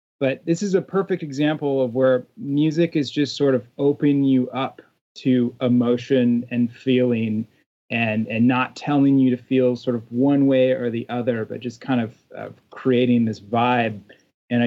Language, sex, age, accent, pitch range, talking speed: English, male, 30-49, American, 115-135 Hz, 175 wpm